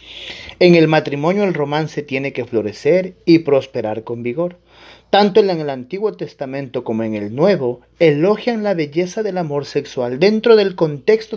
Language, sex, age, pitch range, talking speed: Spanish, male, 40-59, 125-175 Hz, 160 wpm